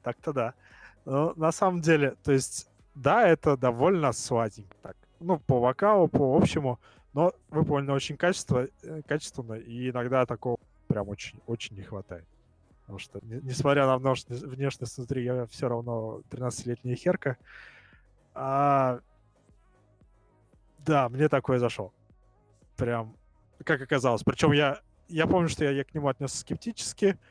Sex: male